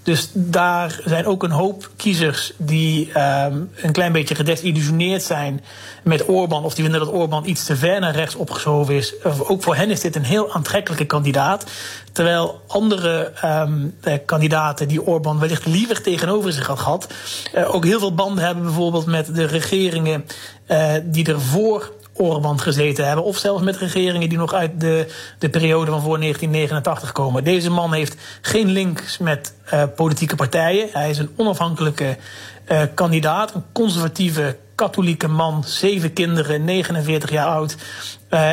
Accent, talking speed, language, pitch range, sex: Dutch, 155 wpm, Dutch, 155-180 Hz, male